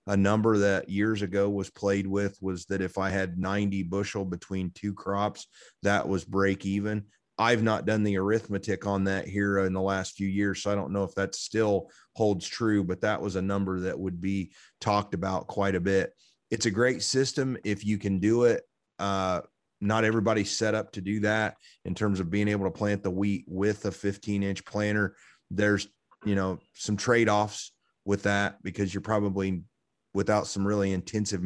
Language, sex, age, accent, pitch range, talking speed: English, male, 30-49, American, 95-105 Hz, 195 wpm